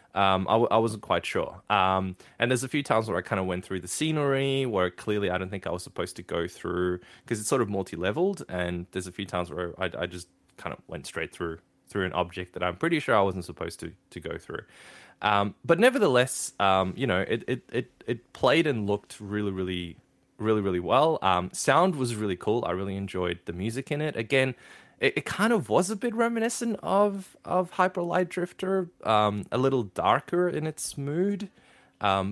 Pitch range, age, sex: 95-145 Hz, 20-39, male